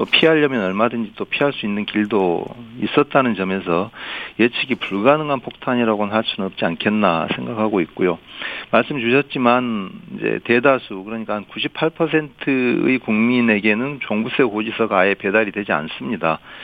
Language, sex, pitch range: Korean, male, 100-140 Hz